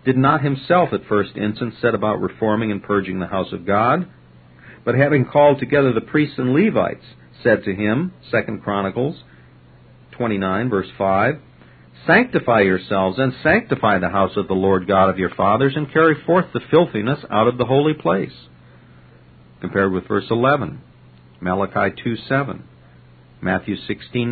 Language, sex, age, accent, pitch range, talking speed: English, male, 50-69, American, 90-130 Hz, 155 wpm